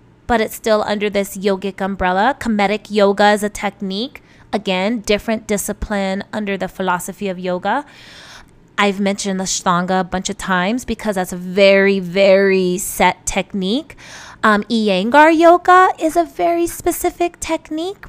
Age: 20-39